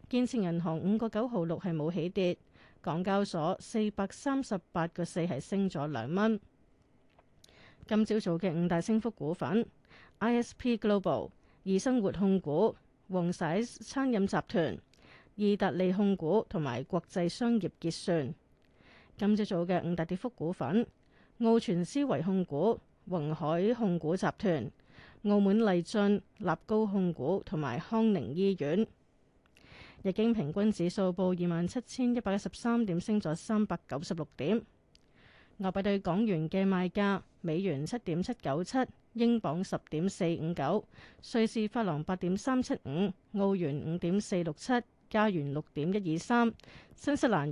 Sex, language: female, Chinese